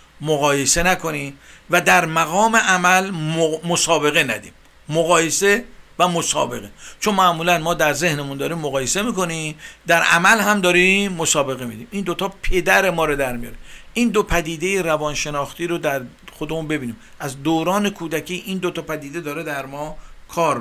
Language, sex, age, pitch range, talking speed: Persian, male, 50-69, 145-185 Hz, 155 wpm